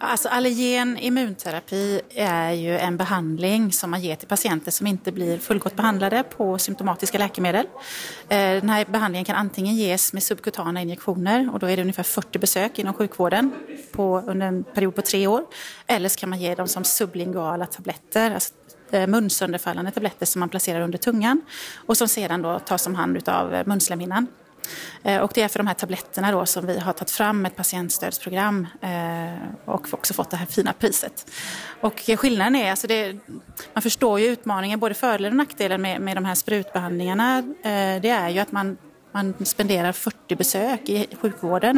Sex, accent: female, native